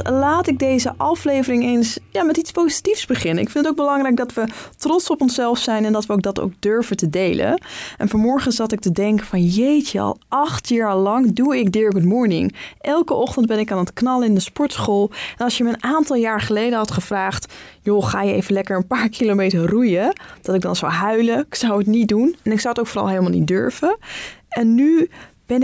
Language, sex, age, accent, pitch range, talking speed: Dutch, female, 20-39, Dutch, 210-275 Hz, 230 wpm